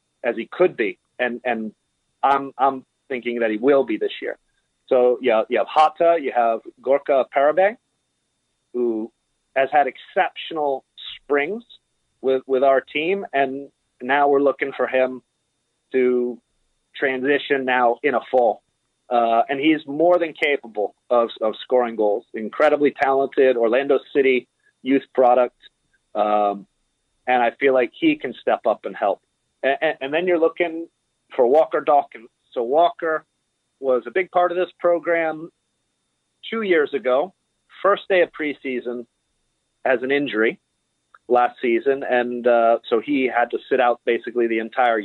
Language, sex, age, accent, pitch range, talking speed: English, male, 30-49, American, 120-150 Hz, 150 wpm